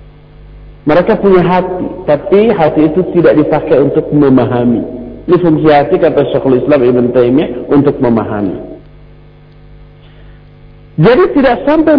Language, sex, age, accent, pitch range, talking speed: Indonesian, male, 50-69, native, 120-185 Hz, 110 wpm